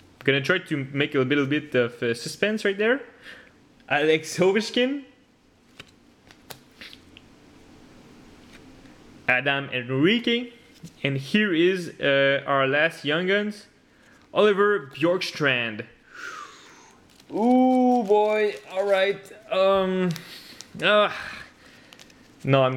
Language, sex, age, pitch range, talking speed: English, male, 20-39, 145-195 Hz, 90 wpm